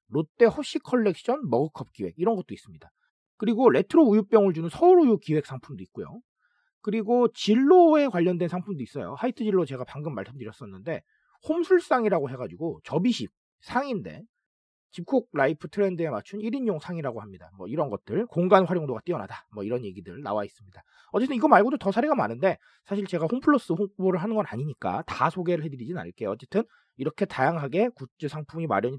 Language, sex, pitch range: Korean, male, 140-235 Hz